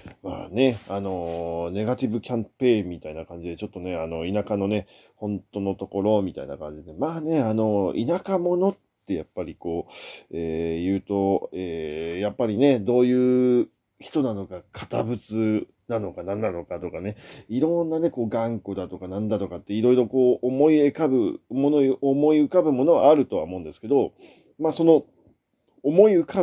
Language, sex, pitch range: Japanese, male, 105-155 Hz